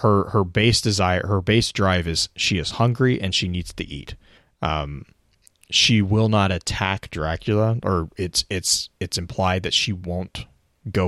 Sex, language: male, English